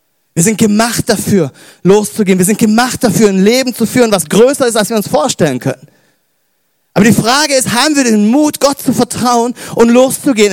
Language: German